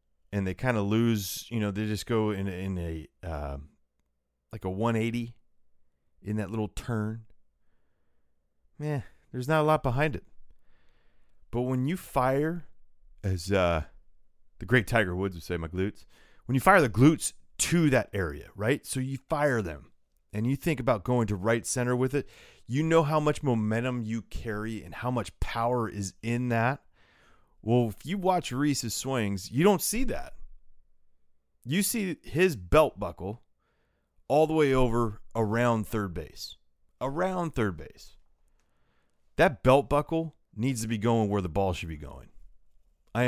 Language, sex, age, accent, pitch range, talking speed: English, male, 30-49, American, 90-130 Hz, 165 wpm